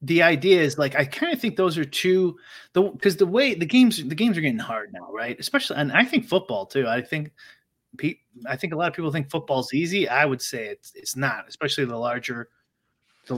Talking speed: 235 wpm